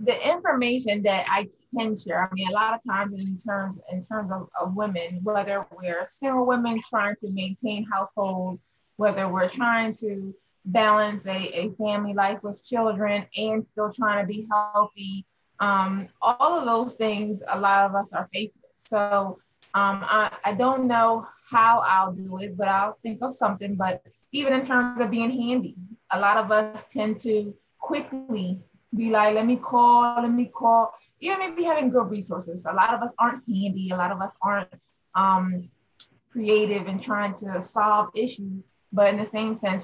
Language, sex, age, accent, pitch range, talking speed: English, female, 20-39, American, 190-225 Hz, 180 wpm